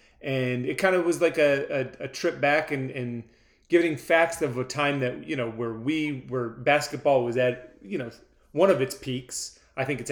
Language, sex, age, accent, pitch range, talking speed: English, male, 30-49, American, 125-155 Hz, 215 wpm